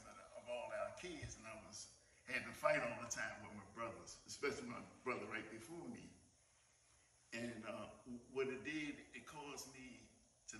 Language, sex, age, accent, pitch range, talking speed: English, male, 50-69, American, 105-130 Hz, 155 wpm